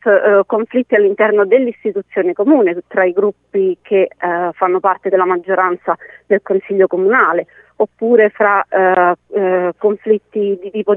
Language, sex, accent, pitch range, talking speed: Italian, female, native, 185-240 Hz, 130 wpm